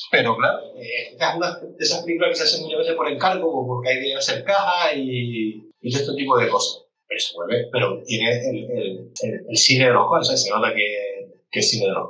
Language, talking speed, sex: Spanish, 250 wpm, male